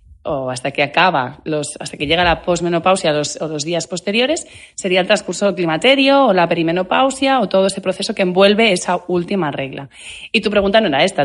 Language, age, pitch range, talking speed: Spanish, 30-49, 160-210 Hz, 190 wpm